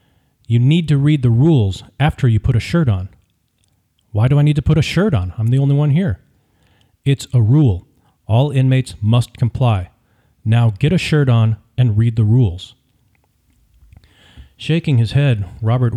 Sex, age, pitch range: male, 40-59, 105-130 Hz